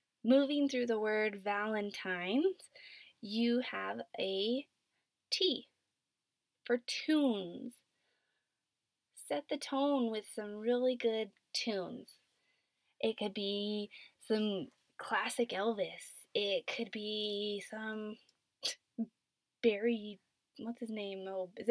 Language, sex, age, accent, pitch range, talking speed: English, female, 20-39, American, 200-250 Hz, 95 wpm